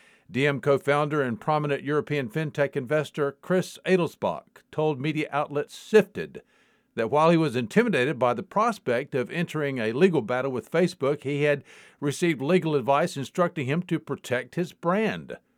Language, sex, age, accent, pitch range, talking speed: English, male, 50-69, American, 140-185 Hz, 150 wpm